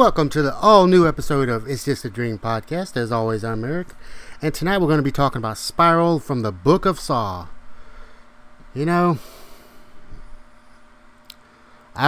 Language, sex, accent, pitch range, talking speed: English, male, American, 105-135 Hz, 165 wpm